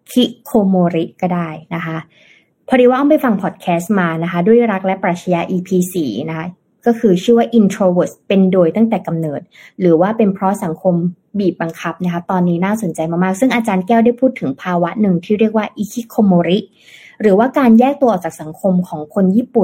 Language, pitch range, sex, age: Thai, 170-220 Hz, female, 20-39